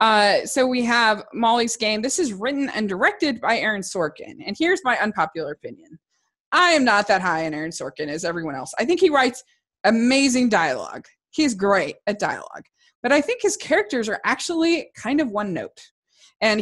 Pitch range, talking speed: 205-275 Hz, 190 wpm